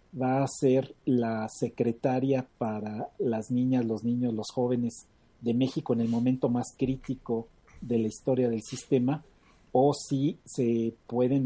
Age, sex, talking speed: 40-59, male, 145 wpm